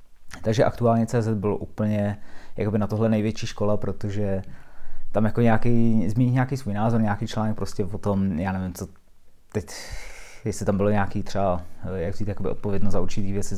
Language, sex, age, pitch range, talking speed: Czech, male, 20-39, 100-110 Hz, 170 wpm